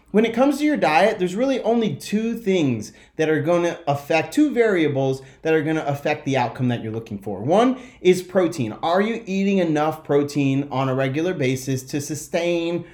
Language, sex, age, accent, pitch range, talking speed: English, male, 30-49, American, 140-185 Hz, 190 wpm